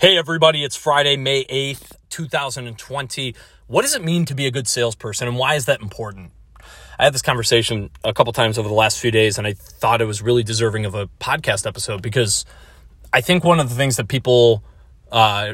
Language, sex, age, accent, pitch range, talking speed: English, male, 30-49, American, 110-140 Hz, 210 wpm